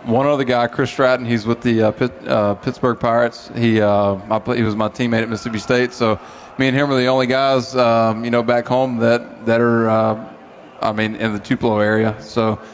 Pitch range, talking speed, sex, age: 110-125 Hz, 220 wpm, male, 20-39